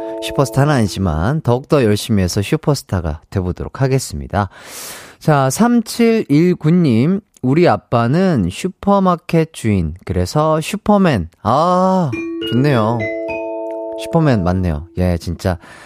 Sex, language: male, Korean